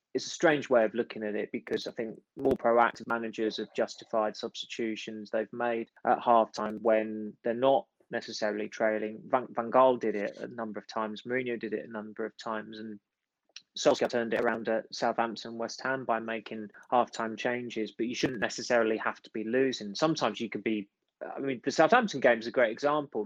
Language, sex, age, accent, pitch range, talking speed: English, male, 20-39, British, 110-130 Hz, 195 wpm